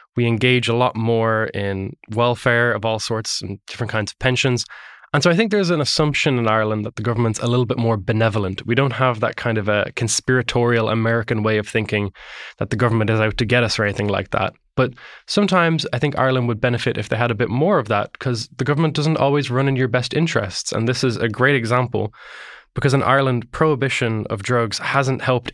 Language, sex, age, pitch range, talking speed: English, male, 10-29, 115-130 Hz, 225 wpm